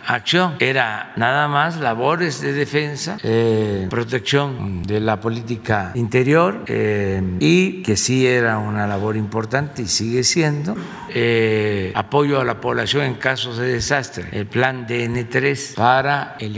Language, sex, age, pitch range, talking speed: Spanish, male, 60-79, 110-145 Hz, 140 wpm